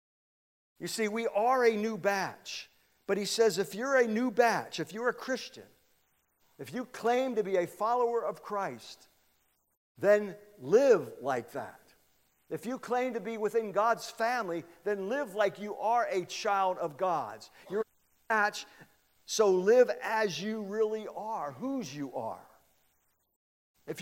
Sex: male